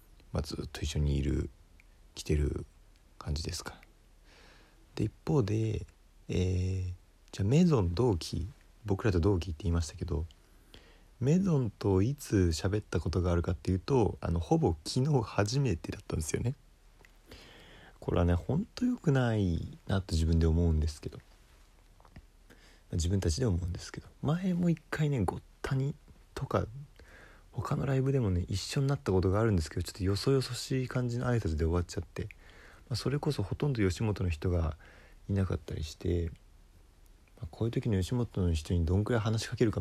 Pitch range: 85-115 Hz